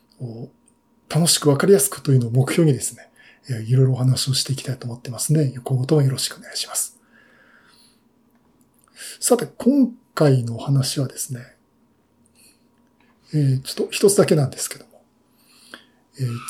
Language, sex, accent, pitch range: Japanese, male, native, 130-195 Hz